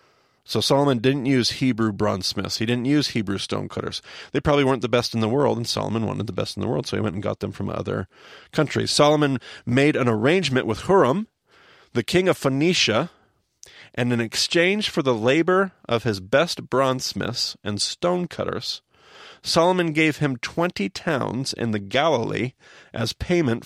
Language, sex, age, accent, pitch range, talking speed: English, male, 40-59, American, 110-155 Hz, 185 wpm